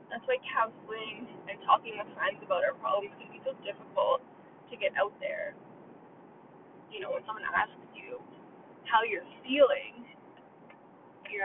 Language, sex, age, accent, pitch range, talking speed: English, female, 20-39, American, 205-295 Hz, 145 wpm